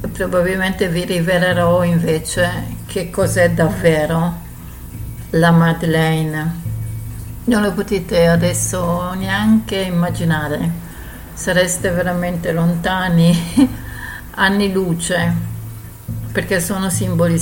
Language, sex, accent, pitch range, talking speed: Italian, female, native, 155-180 Hz, 80 wpm